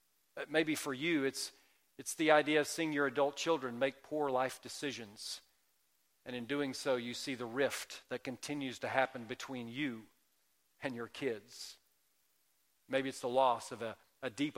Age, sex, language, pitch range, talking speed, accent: 40-59, male, English, 125-155 Hz, 170 wpm, American